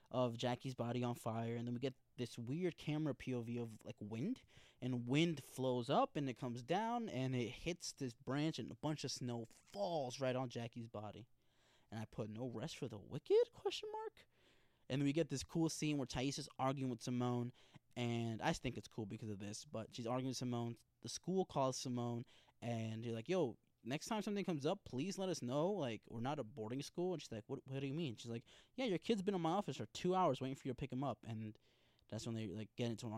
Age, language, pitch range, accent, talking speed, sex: 20-39, English, 120-150 Hz, American, 240 wpm, male